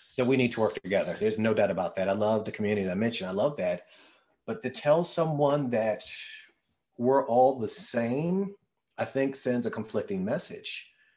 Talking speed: 195 wpm